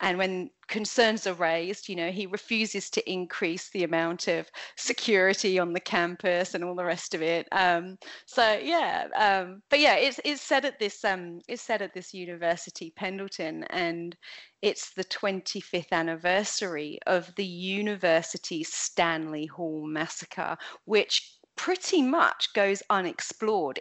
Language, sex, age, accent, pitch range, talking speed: English, female, 30-49, British, 180-230 Hz, 145 wpm